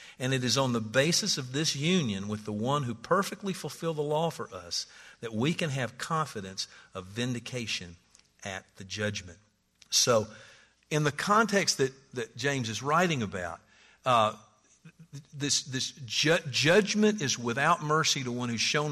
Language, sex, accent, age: English, male, American, 50-69